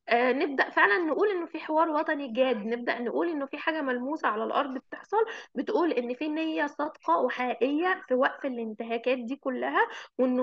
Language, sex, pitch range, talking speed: Arabic, female, 245-325 Hz, 165 wpm